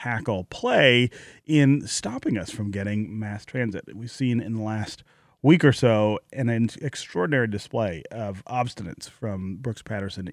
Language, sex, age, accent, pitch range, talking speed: English, male, 30-49, American, 105-145 Hz, 145 wpm